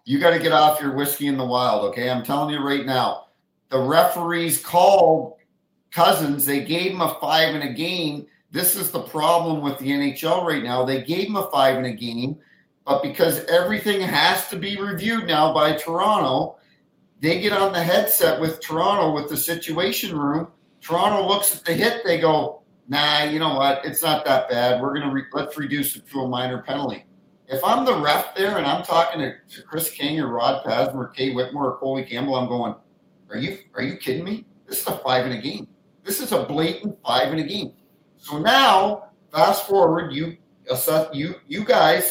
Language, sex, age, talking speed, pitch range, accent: English, male, 50-69, 190 wpm, 140-180 Hz, American